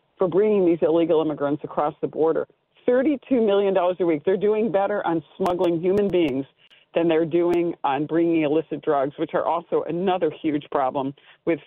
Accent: American